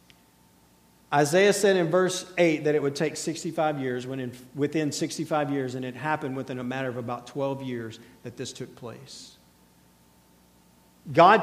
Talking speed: 165 wpm